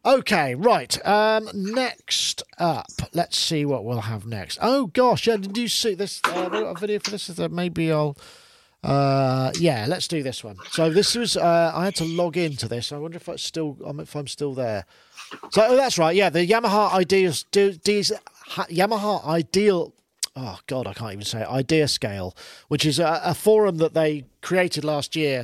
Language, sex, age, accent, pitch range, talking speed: English, male, 40-59, British, 135-180 Hz, 195 wpm